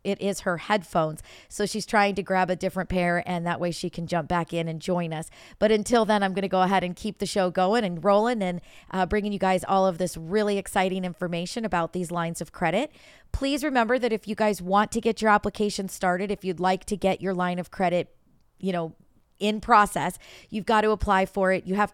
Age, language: 40-59, English